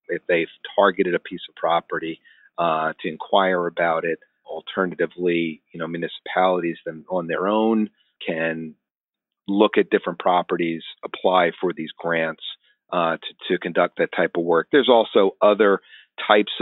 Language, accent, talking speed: English, American, 145 wpm